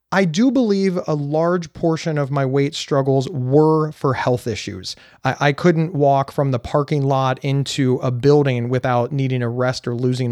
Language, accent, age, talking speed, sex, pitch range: English, American, 30-49, 180 wpm, male, 130-165 Hz